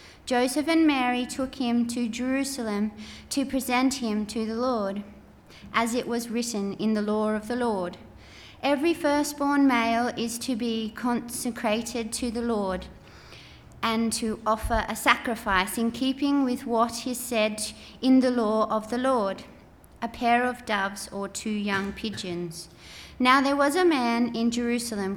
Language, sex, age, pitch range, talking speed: English, female, 30-49, 210-255 Hz, 155 wpm